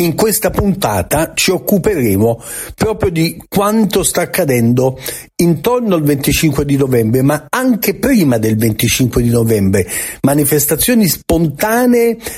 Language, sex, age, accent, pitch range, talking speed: Italian, male, 50-69, native, 115-175 Hz, 115 wpm